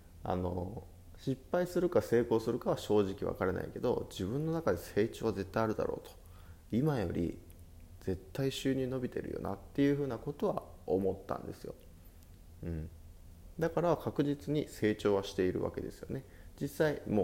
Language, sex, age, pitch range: Japanese, male, 20-39, 90-120 Hz